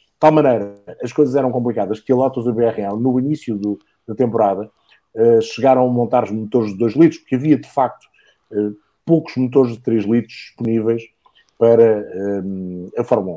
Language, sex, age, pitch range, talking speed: English, male, 50-69, 105-130 Hz, 190 wpm